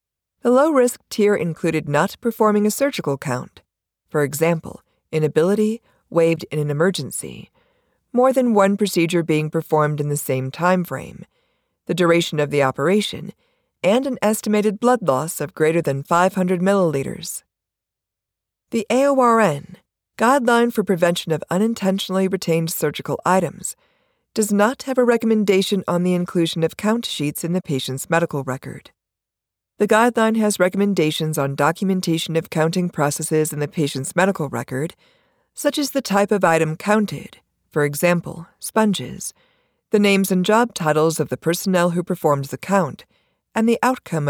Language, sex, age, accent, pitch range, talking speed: English, female, 40-59, American, 150-210 Hz, 145 wpm